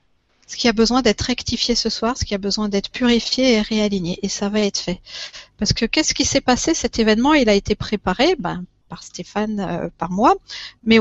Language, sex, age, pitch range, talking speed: French, female, 40-59, 205-250 Hz, 220 wpm